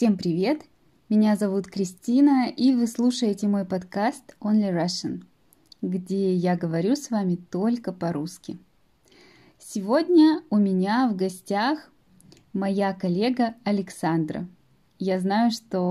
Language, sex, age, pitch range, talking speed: Russian, female, 20-39, 185-235 Hz, 115 wpm